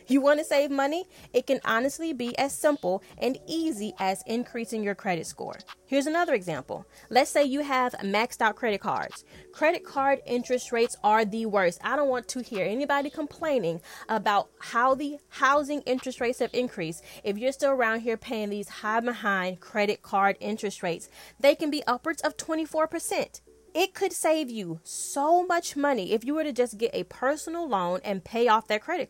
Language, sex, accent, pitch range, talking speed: English, female, American, 215-285 Hz, 190 wpm